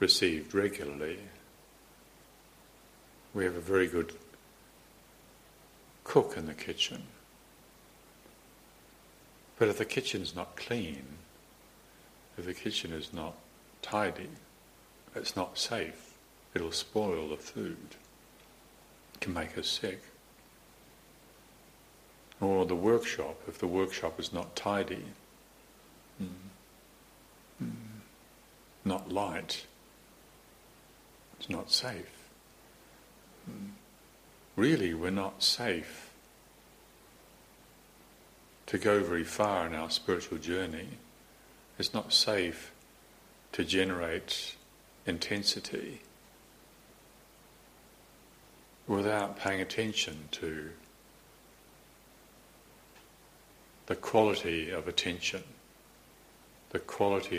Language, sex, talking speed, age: English, male, 85 wpm, 60-79